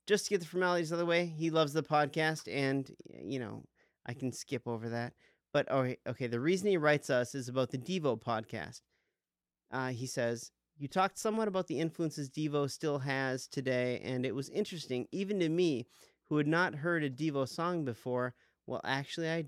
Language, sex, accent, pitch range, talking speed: English, male, American, 125-160 Hz, 195 wpm